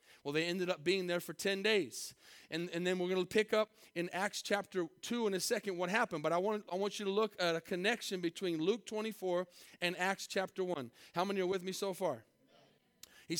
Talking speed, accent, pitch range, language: 235 wpm, American, 170-220 Hz, English